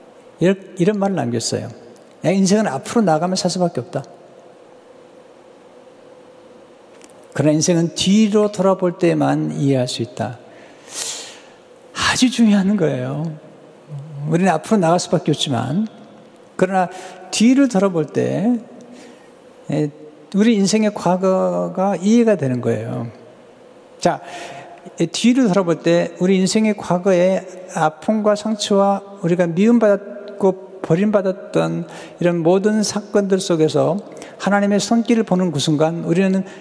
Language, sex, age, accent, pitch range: Korean, male, 60-79, native, 155-215 Hz